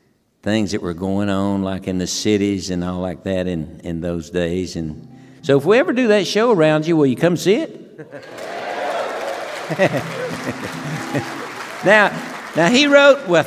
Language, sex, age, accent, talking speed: English, male, 60-79, American, 165 wpm